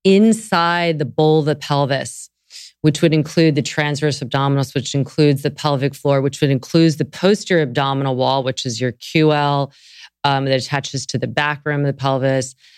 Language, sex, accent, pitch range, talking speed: English, female, American, 145-175 Hz, 180 wpm